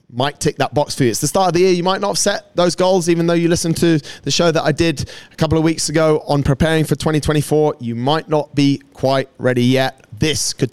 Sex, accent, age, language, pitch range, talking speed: male, British, 30-49, English, 130-160 Hz, 265 wpm